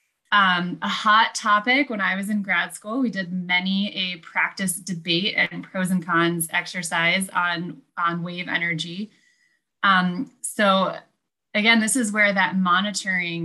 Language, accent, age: English, American, 20-39